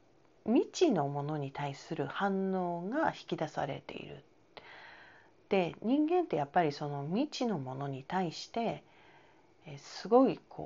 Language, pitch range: Japanese, 140-200 Hz